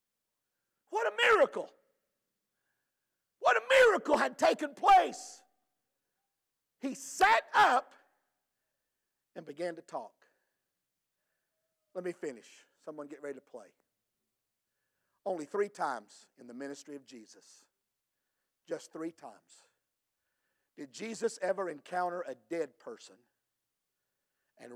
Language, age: English, 50-69